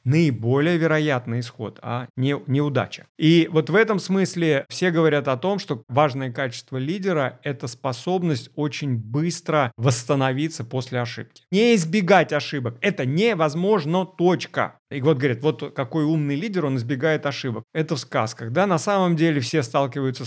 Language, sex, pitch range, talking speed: Russian, male, 135-170 Hz, 155 wpm